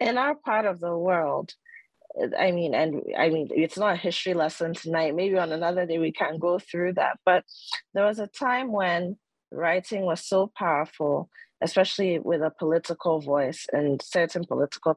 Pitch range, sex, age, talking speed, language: 160-200 Hz, female, 30-49, 175 wpm, English